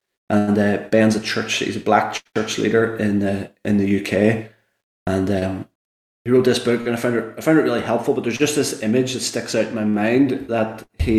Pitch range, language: 105-115 Hz, English